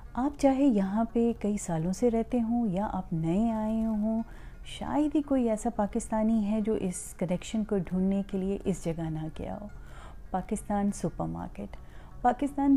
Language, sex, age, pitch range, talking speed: Urdu, female, 30-49, 180-230 Hz, 170 wpm